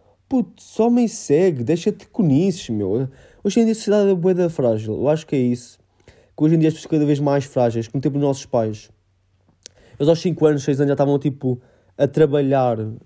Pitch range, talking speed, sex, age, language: 130-195 Hz, 220 wpm, male, 20-39, Portuguese